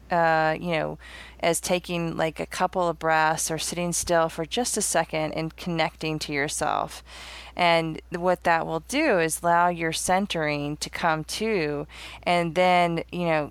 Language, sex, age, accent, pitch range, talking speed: English, female, 20-39, American, 150-170 Hz, 165 wpm